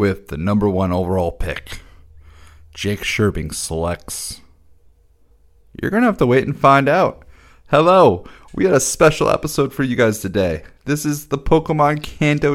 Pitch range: 90-130 Hz